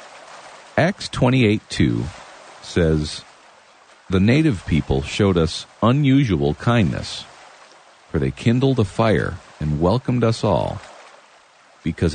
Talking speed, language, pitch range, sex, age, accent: 100 wpm, English, 75-125 Hz, male, 50-69, American